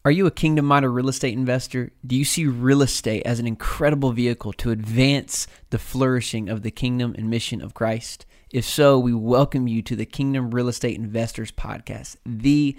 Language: English